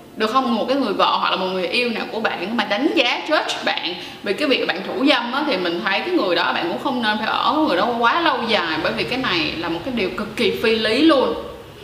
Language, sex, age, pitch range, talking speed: Vietnamese, female, 20-39, 190-270 Hz, 285 wpm